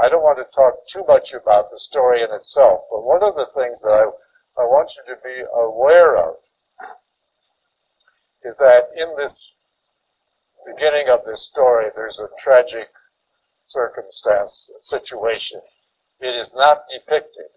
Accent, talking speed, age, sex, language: American, 145 wpm, 60-79, male, English